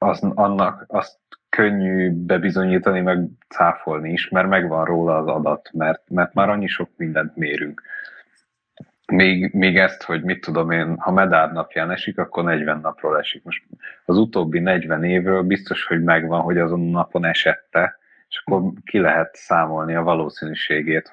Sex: male